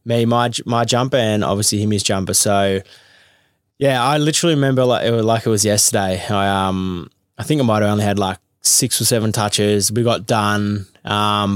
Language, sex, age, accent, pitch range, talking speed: English, male, 20-39, Australian, 100-115 Hz, 185 wpm